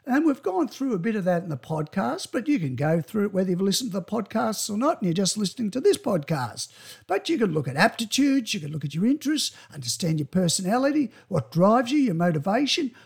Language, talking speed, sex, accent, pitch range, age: English, 240 wpm, male, Australian, 180-265 Hz, 60-79